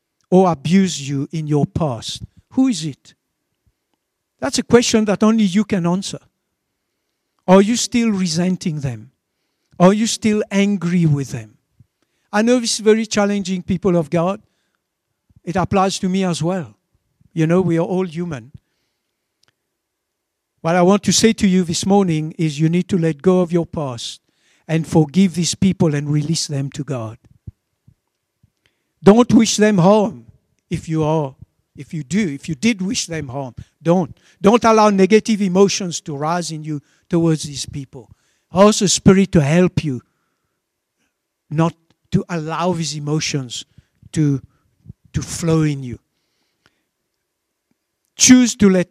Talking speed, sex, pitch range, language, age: 150 wpm, male, 150-200 Hz, English, 60-79